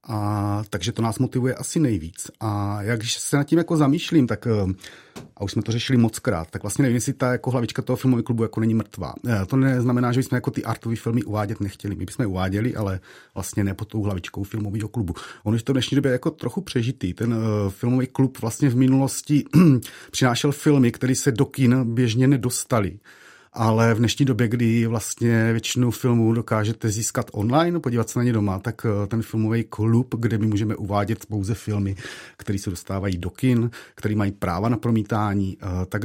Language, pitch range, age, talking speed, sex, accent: Czech, 105-125 Hz, 30-49, 190 wpm, male, native